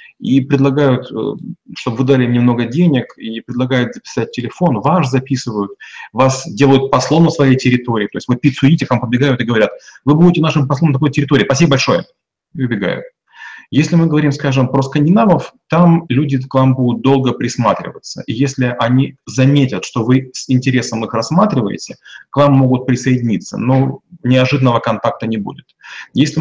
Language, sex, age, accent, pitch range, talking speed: Russian, male, 30-49, native, 120-145 Hz, 165 wpm